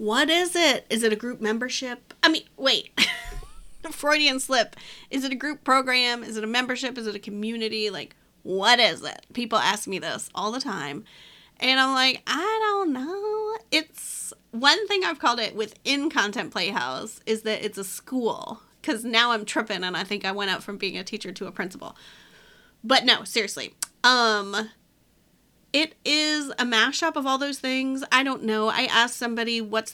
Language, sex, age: English, female, 30-49